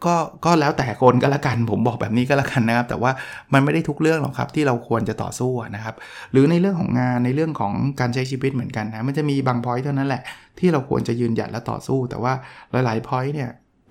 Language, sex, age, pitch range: Thai, male, 20-39, 120-150 Hz